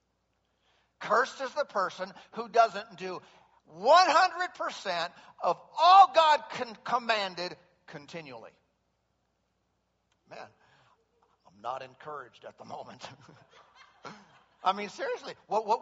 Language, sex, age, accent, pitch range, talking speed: English, male, 50-69, American, 165-270 Hz, 100 wpm